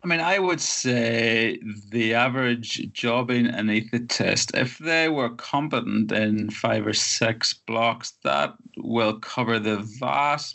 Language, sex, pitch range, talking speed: English, male, 110-125 Hz, 130 wpm